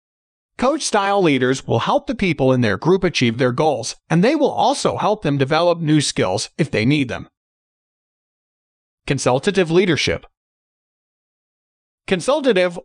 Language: English